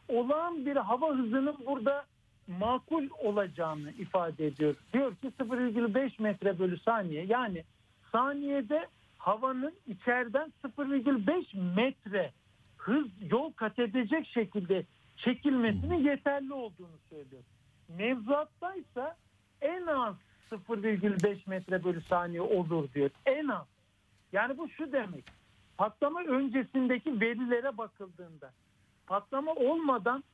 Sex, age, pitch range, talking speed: male, 60-79, 180-270 Hz, 100 wpm